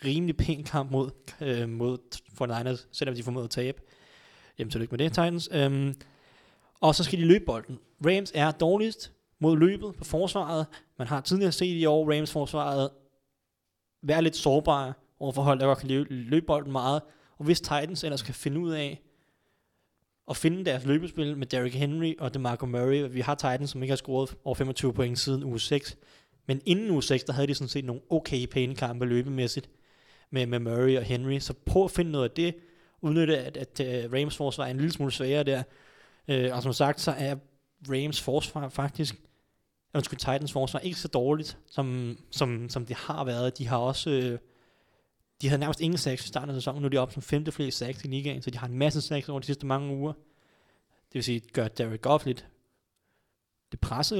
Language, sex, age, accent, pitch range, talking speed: Danish, male, 20-39, native, 130-155 Hz, 205 wpm